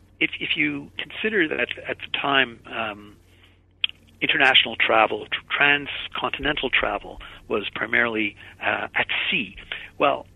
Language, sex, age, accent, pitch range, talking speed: English, male, 60-79, American, 105-140 Hz, 110 wpm